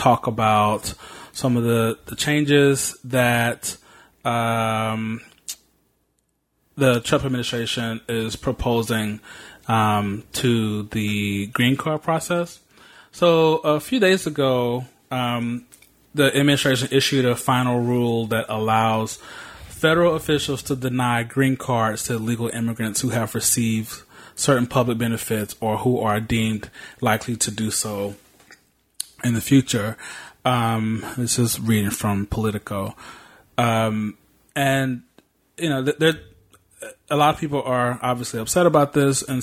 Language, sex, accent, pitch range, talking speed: English, male, American, 115-135 Hz, 125 wpm